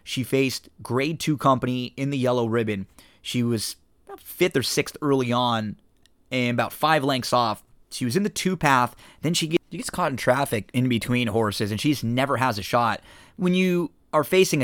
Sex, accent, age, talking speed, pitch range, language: male, American, 20-39, 195 wpm, 110-140 Hz, English